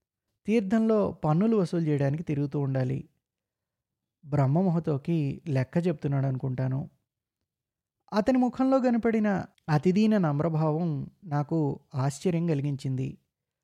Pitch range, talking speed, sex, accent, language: 140-185 Hz, 80 wpm, male, native, Telugu